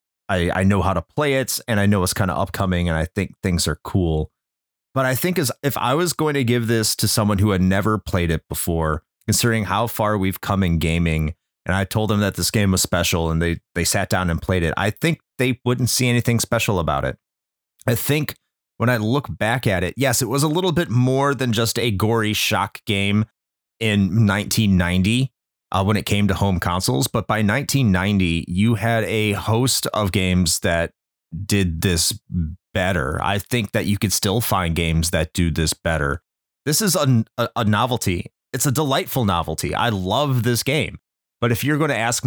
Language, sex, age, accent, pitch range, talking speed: English, male, 30-49, American, 90-120 Hz, 205 wpm